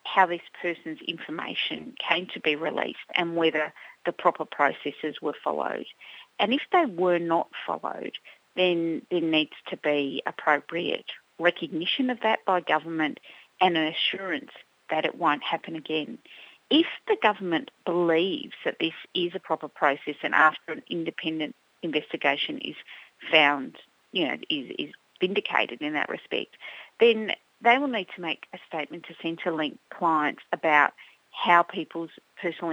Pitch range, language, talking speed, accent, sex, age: 160-205 Hz, English, 145 wpm, Australian, female, 40-59